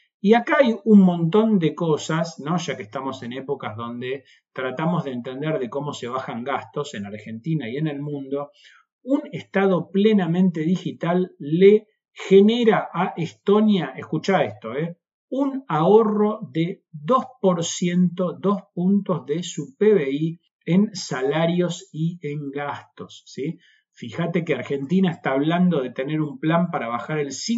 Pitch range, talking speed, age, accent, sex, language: 140-190 Hz, 145 wpm, 40-59, Argentinian, male, Spanish